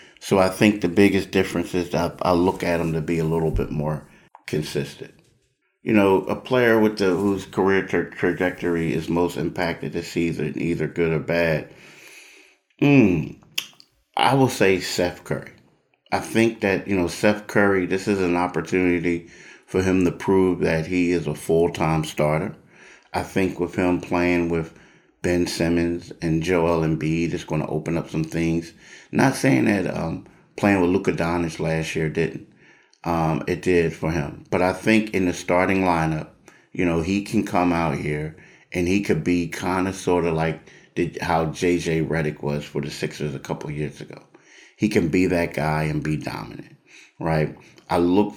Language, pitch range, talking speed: English, 80-95 Hz, 180 wpm